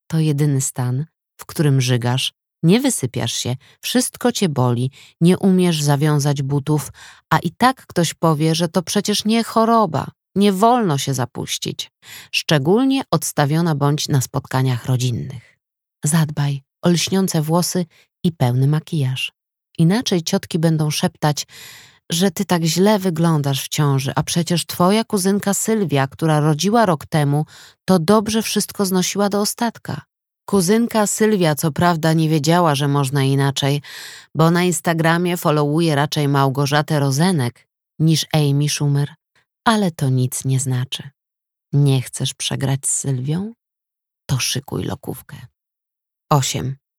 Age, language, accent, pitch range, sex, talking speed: 20-39, Polish, native, 140-185 Hz, female, 130 wpm